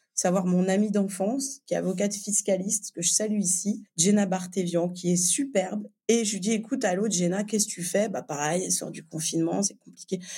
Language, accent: French, French